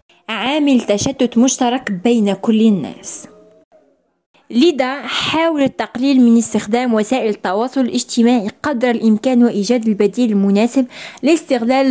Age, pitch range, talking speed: 20-39, 225-280 Hz, 100 wpm